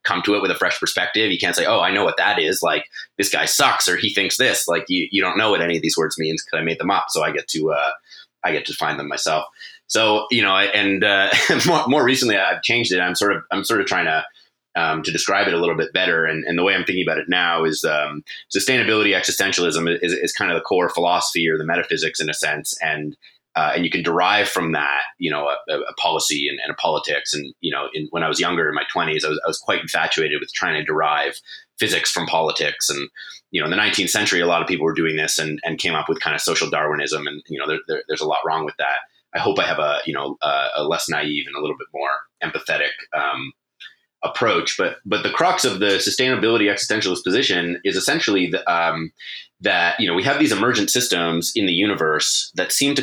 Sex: male